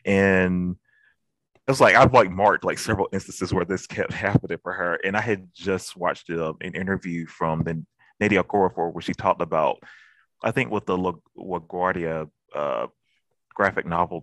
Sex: male